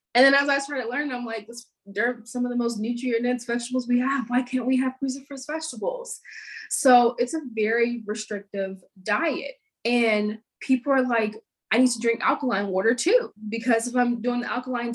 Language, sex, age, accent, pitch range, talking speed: English, female, 20-39, American, 200-250 Hz, 190 wpm